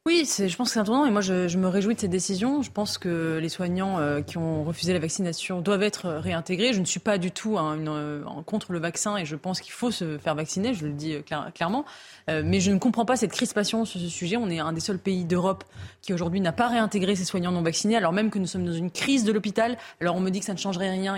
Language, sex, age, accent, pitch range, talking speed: French, female, 20-39, French, 175-225 Hz, 285 wpm